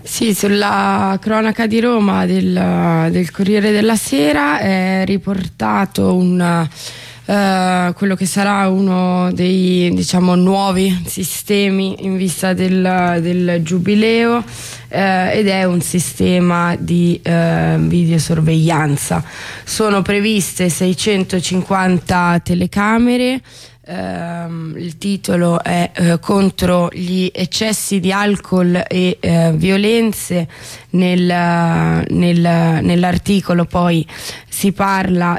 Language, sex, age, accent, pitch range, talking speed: Italian, female, 20-39, native, 170-195 Hz, 95 wpm